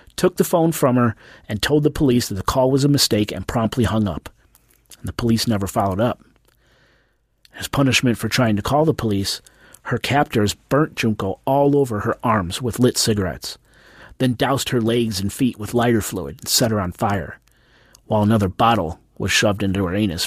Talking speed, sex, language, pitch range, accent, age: 195 wpm, male, English, 105-130 Hz, American, 40-59